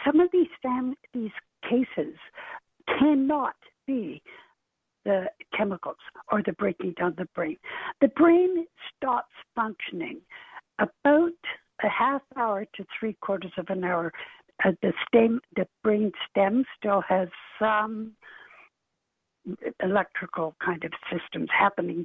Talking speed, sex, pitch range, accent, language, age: 120 wpm, female, 210-310 Hz, American, English, 60-79